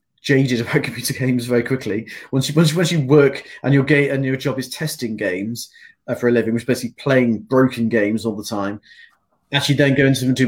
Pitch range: 115-140 Hz